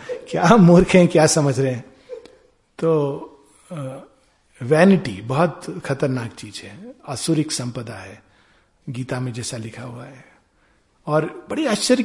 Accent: native